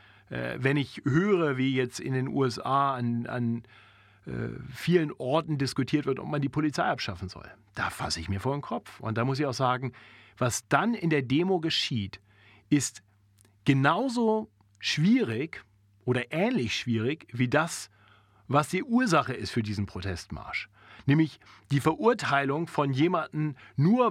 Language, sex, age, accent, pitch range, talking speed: German, male, 40-59, German, 115-165 Hz, 150 wpm